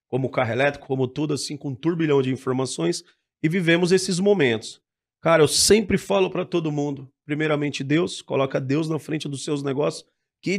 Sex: male